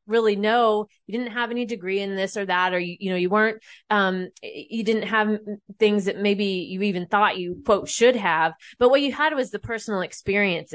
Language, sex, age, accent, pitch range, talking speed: English, female, 20-39, American, 185-225 Hz, 220 wpm